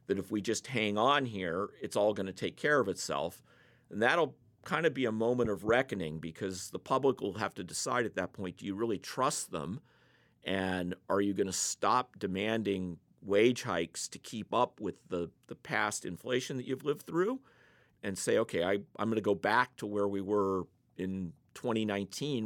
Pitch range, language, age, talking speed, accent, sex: 95-115 Hz, English, 40-59, 200 wpm, American, male